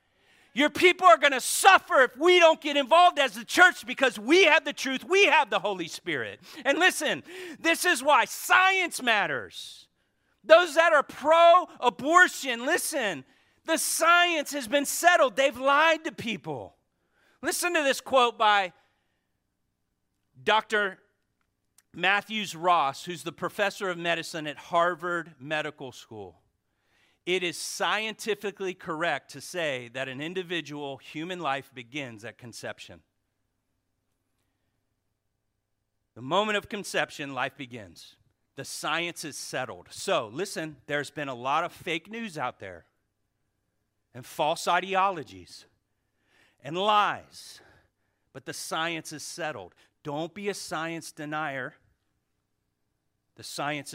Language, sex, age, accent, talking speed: English, male, 40-59, American, 125 wpm